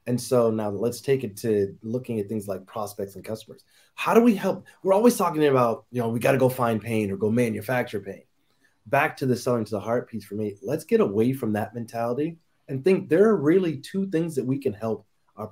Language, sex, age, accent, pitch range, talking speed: English, male, 30-49, American, 115-150 Hz, 240 wpm